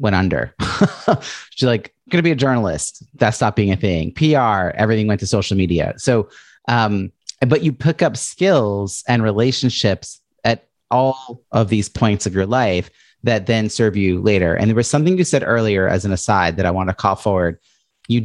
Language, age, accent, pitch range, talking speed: English, 30-49, American, 90-120 Hz, 195 wpm